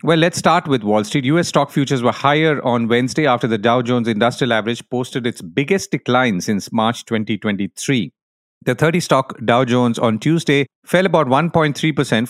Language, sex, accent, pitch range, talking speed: English, male, Indian, 110-140 Hz, 170 wpm